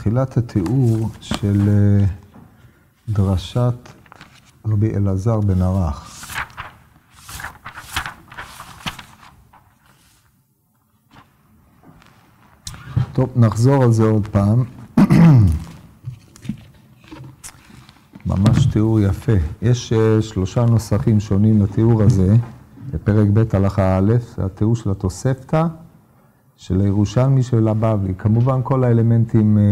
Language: Hebrew